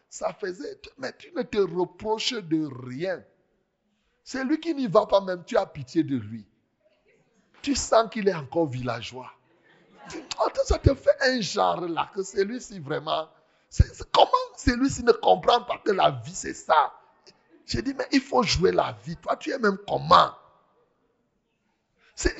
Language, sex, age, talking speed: French, male, 60-79, 165 wpm